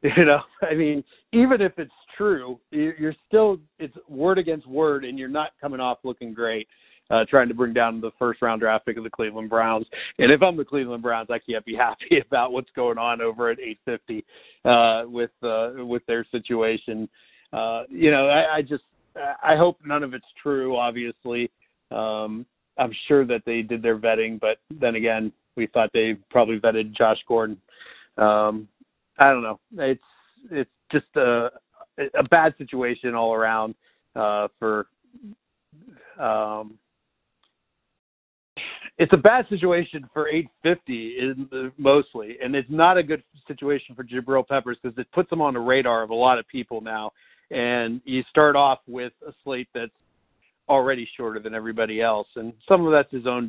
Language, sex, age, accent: English, male, 50-69, American